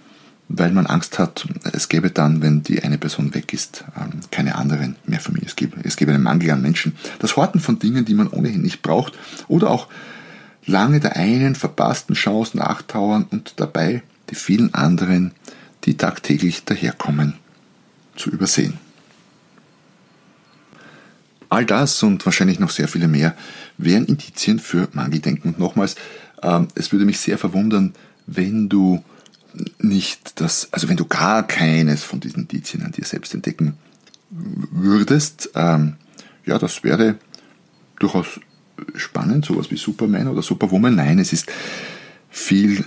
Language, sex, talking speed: German, male, 145 wpm